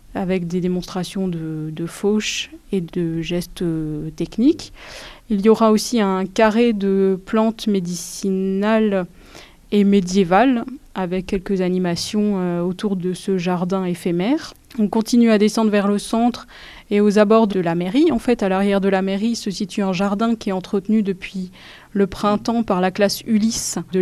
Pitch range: 180-220 Hz